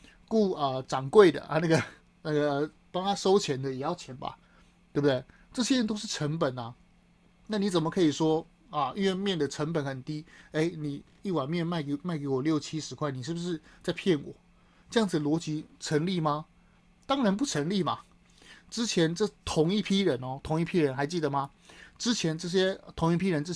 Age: 20-39